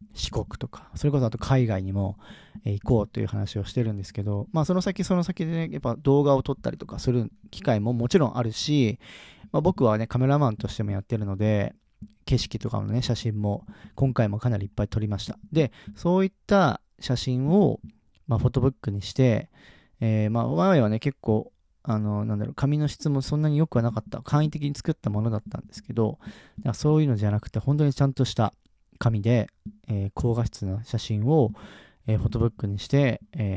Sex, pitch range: male, 105-135 Hz